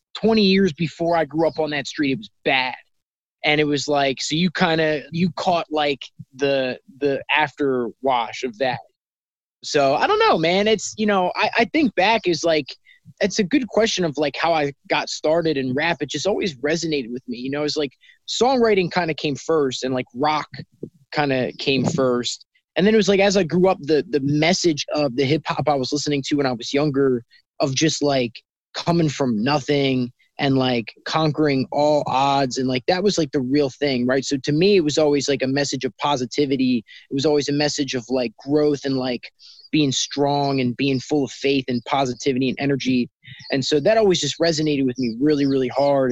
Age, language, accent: 20-39, English, American